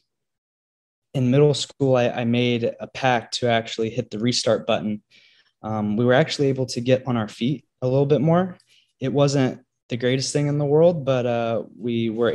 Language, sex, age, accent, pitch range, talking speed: English, male, 20-39, American, 115-130 Hz, 195 wpm